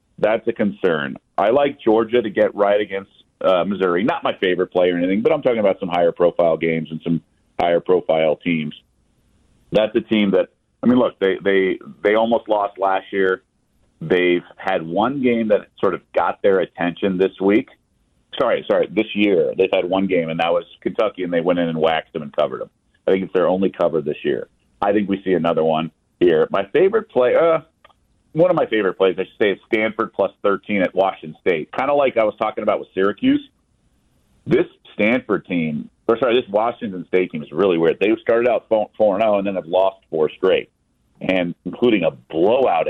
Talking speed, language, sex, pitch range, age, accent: 205 wpm, English, male, 90-150 Hz, 40-59, American